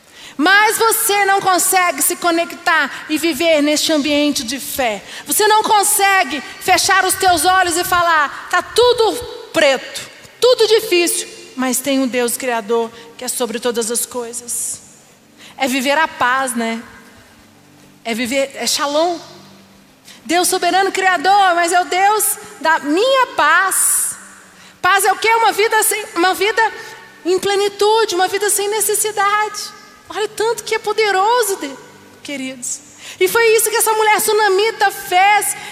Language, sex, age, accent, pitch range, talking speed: Portuguese, female, 40-59, Brazilian, 270-400 Hz, 140 wpm